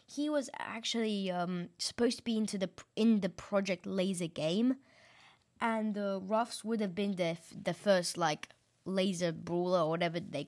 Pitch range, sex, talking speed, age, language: 175-210 Hz, female, 185 wpm, 20-39, English